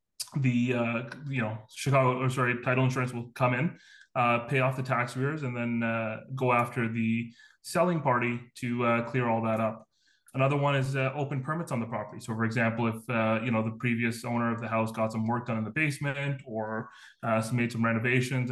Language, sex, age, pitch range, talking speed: English, male, 20-39, 115-130 Hz, 215 wpm